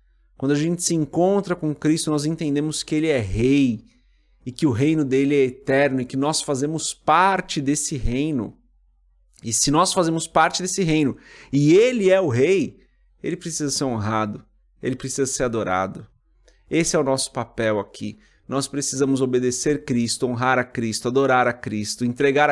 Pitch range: 115-155 Hz